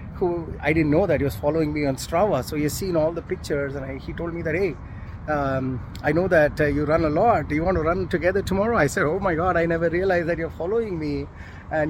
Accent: Indian